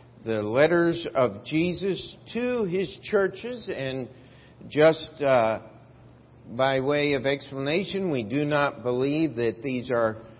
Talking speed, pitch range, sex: 120 wpm, 135-185 Hz, male